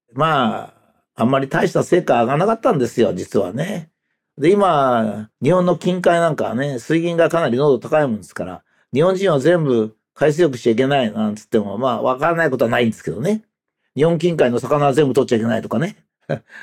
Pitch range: 140-210 Hz